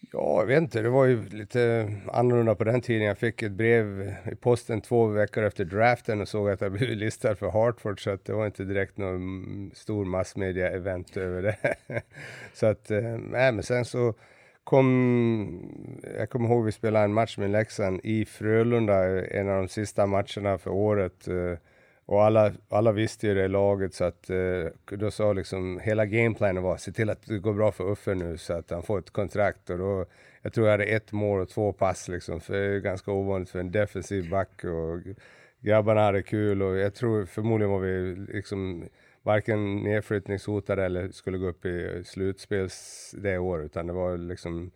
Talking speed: 195 wpm